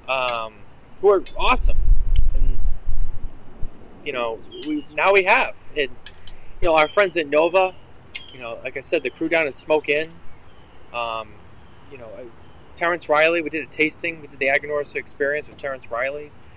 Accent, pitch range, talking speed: American, 115-155 Hz, 170 wpm